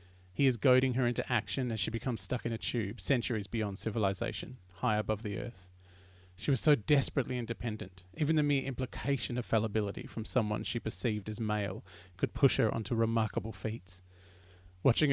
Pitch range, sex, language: 95-120 Hz, male, English